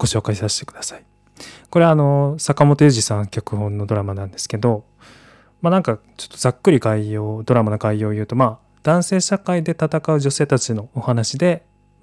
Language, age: Japanese, 20-39